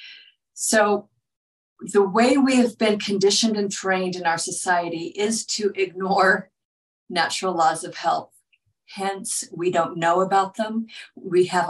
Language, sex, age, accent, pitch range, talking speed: English, female, 50-69, American, 170-210 Hz, 140 wpm